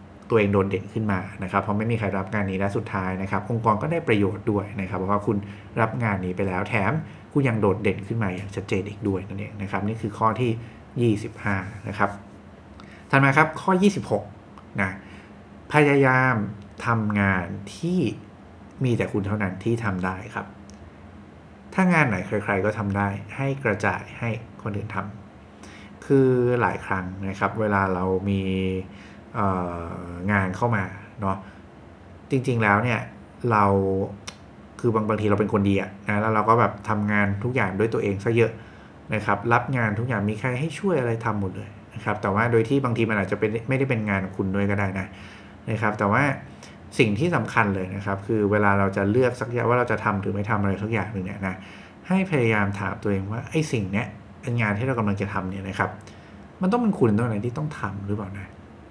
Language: English